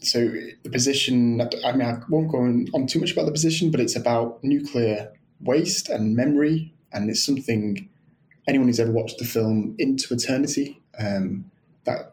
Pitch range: 110-130 Hz